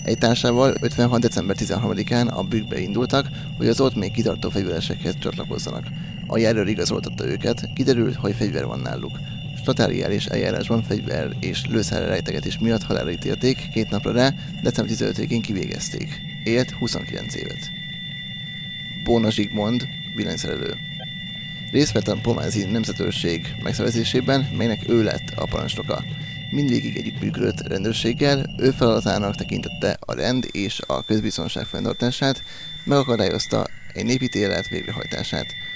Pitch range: 110-135 Hz